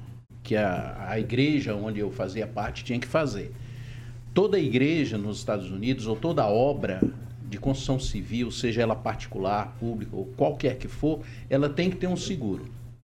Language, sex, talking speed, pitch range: Portuguese, male, 165 wpm, 120-145 Hz